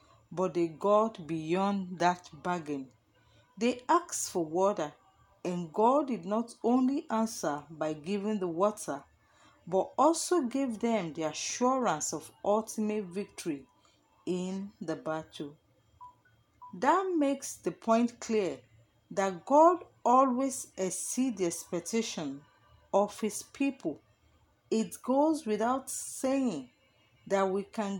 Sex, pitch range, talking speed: female, 165-245 Hz, 115 wpm